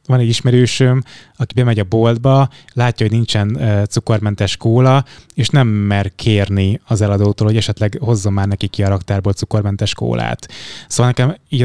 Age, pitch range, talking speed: 20-39, 100-120 Hz, 165 wpm